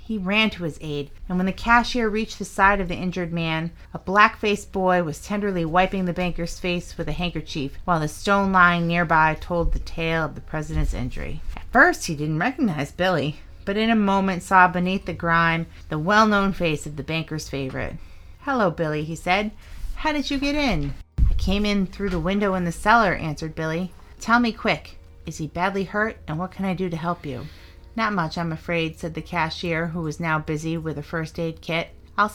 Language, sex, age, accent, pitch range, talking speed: English, female, 30-49, American, 160-200 Hz, 210 wpm